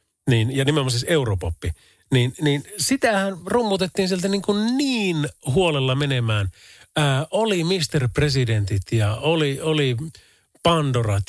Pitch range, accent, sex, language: 115-185 Hz, native, male, Finnish